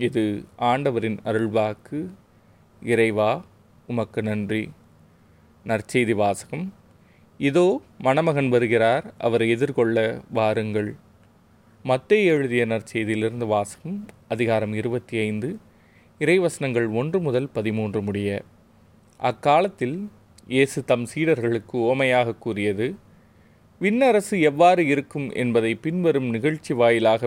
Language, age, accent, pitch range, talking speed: Tamil, 30-49, native, 110-140 Hz, 85 wpm